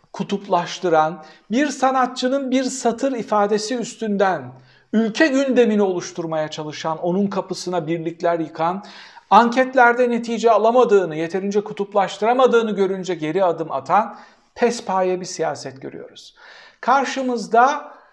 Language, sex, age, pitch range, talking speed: Turkish, male, 60-79, 160-235 Hz, 95 wpm